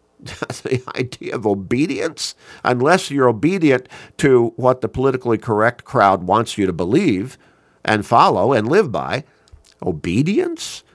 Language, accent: English, American